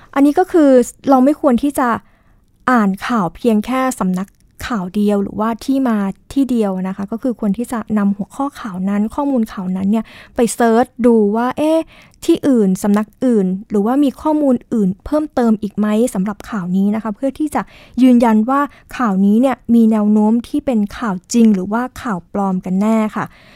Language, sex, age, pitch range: Thai, female, 20-39, 210-265 Hz